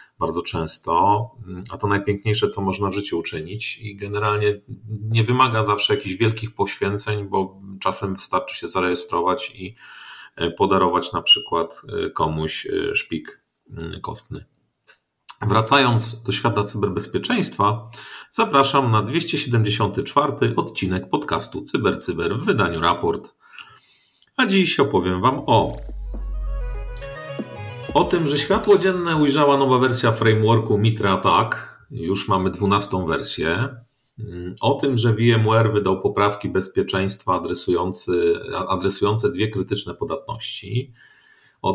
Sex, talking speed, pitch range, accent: male, 110 wpm, 95-120 Hz, native